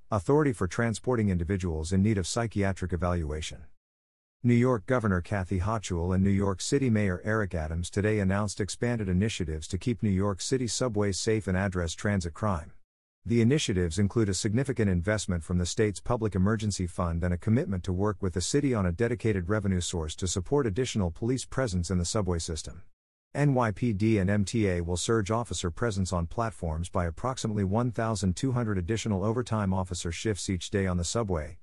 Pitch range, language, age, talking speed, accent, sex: 90-115 Hz, English, 50-69, 175 wpm, American, male